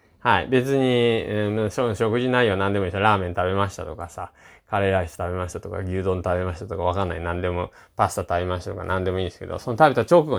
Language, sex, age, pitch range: Japanese, male, 20-39, 95-140 Hz